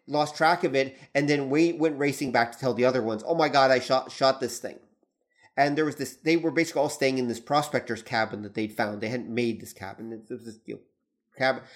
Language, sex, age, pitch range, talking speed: English, male, 30-49, 125-150 Hz, 245 wpm